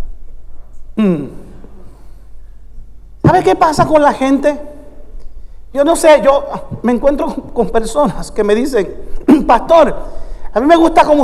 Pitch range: 235-300 Hz